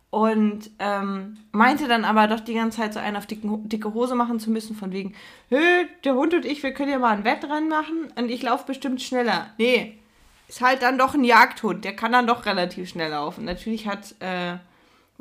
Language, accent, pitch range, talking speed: German, German, 200-245 Hz, 215 wpm